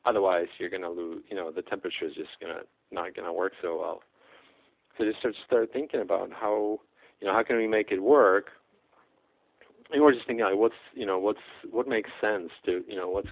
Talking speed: 210 wpm